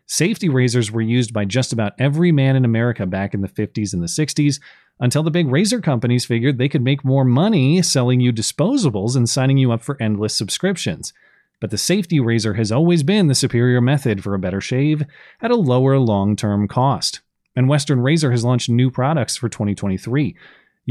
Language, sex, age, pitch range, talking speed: English, male, 30-49, 115-150 Hz, 190 wpm